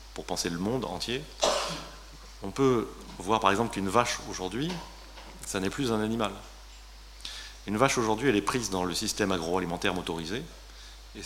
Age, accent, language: 30-49, French, French